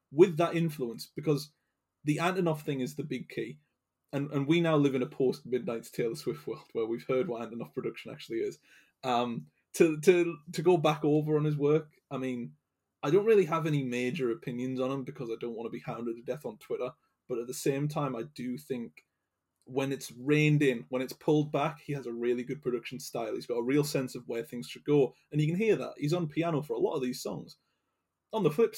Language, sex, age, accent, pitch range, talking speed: English, male, 20-39, British, 125-155 Hz, 235 wpm